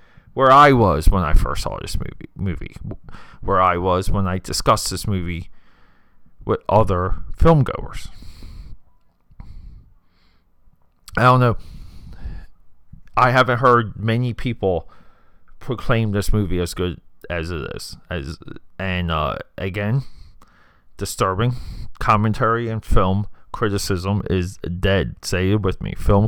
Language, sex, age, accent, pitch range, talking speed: English, male, 30-49, American, 90-115 Hz, 125 wpm